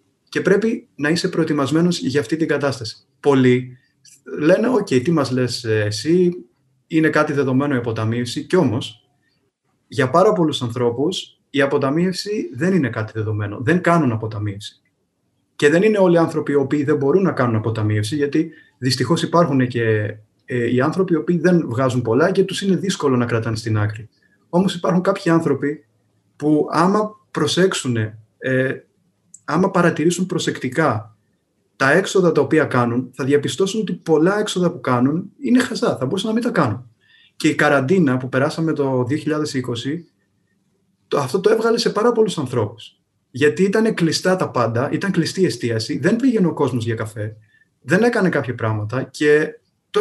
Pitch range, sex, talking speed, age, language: 125-185 Hz, male, 160 wpm, 30-49, Greek